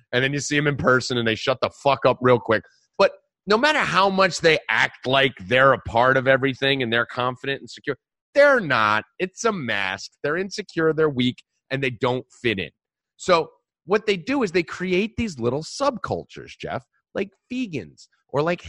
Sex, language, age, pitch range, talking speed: male, English, 30-49, 135-220 Hz, 200 wpm